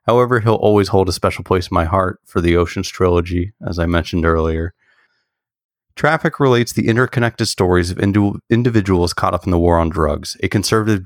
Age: 30-49